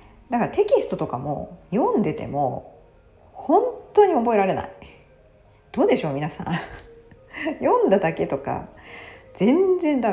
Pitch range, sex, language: 135-220 Hz, female, Japanese